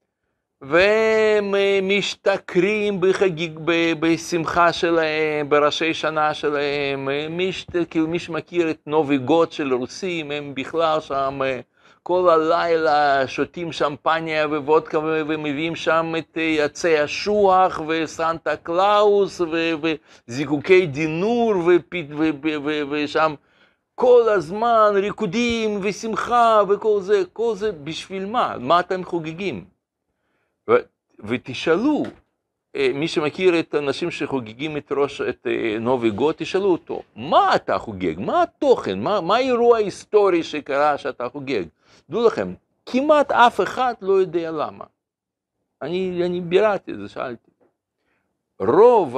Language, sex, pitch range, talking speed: Hebrew, male, 150-210 Hz, 105 wpm